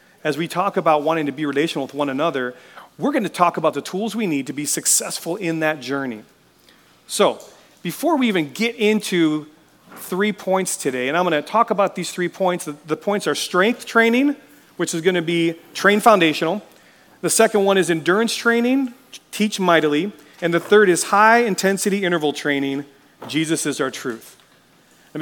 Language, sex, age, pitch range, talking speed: English, male, 40-59, 155-215 Hz, 180 wpm